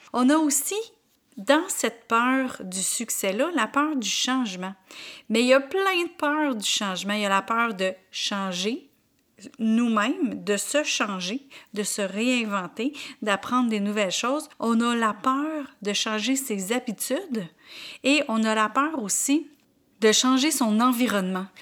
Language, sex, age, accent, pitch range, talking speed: French, female, 40-59, Canadian, 210-275 Hz, 160 wpm